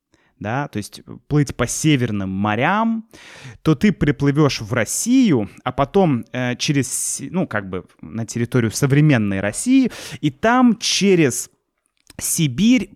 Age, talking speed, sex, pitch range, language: 20-39, 125 wpm, male, 120-180 Hz, Russian